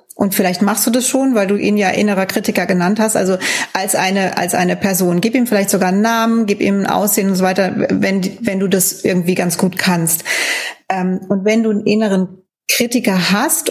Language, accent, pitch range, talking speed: German, German, 190-240 Hz, 210 wpm